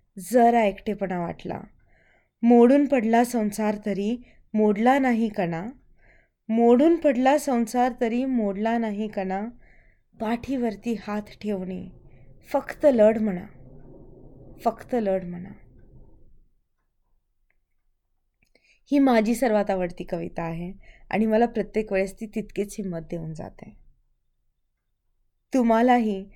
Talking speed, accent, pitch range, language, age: 85 wpm, native, 190-230 Hz, Marathi, 20-39